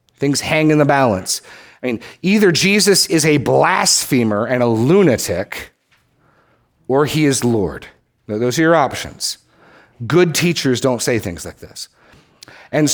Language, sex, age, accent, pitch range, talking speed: English, male, 40-59, American, 110-150 Hz, 145 wpm